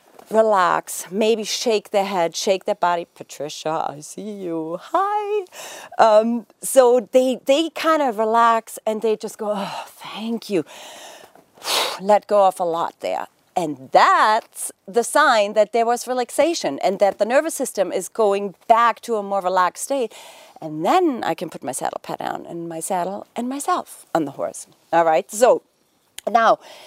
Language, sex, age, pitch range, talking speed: English, female, 40-59, 190-250 Hz, 165 wpm